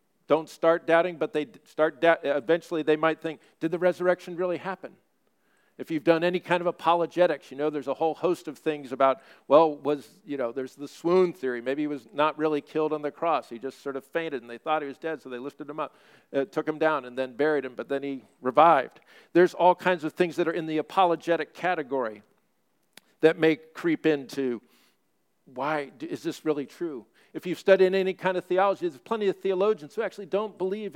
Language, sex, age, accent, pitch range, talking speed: English, male, 50-69, American, 150-185 Hz, 215 wpm